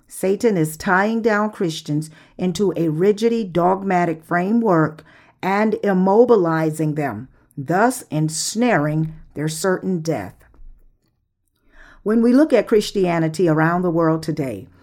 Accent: American